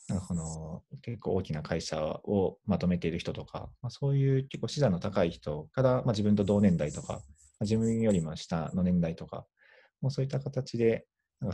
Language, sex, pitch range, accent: Japanese, male, 90-125 Hz, native